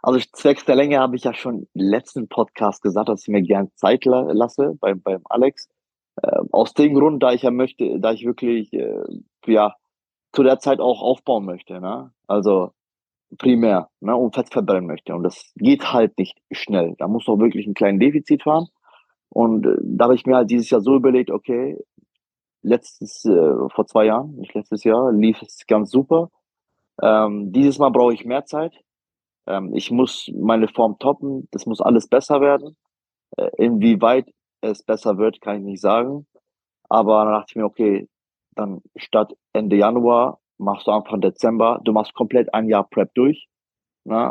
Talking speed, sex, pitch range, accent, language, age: 180 wpm, male, 100-130 Hz, German, German, 30-49